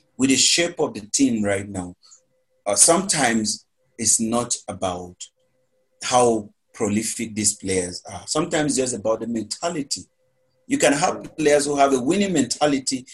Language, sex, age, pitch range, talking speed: English, male, 30-49, 110-165 Hz, 150 wpm